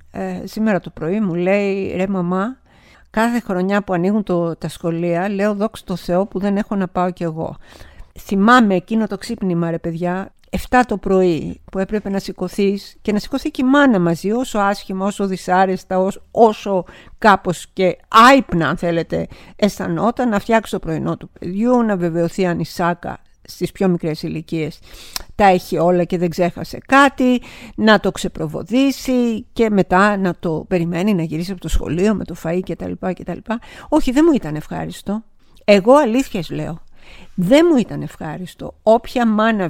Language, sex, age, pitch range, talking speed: Greek, female, 50-69, 175-220 Hz, 170 wpm